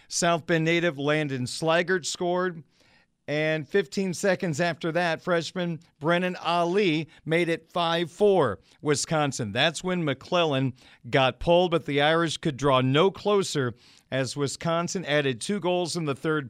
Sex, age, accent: male, 40-59, American